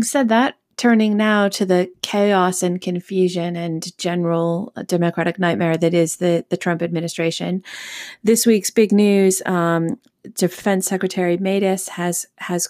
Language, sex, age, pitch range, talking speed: English, female, 30-49, 170-185 Hz, 140 wpm